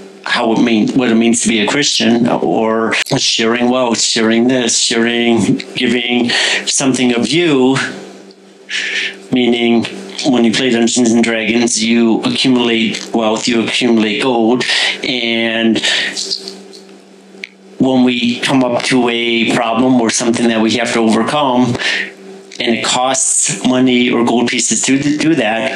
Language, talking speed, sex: English, 135 wpm, male